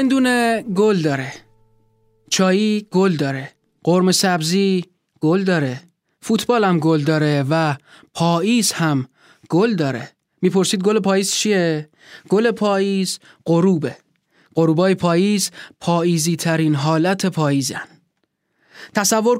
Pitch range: 160-195 Hz